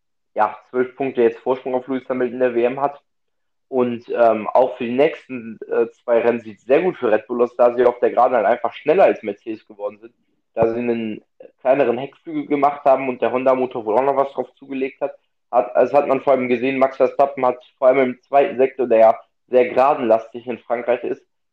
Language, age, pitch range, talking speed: German, 20-39, 115-130 Hz, 225 wpm